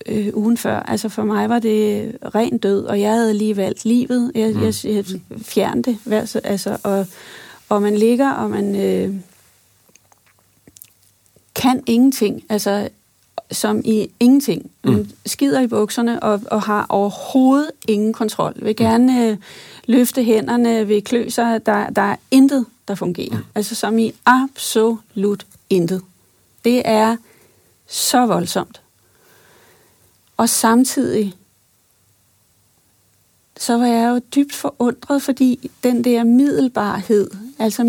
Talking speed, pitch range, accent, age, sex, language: 125 wpm, 205-240 Hz, native, 30-49, female, Danish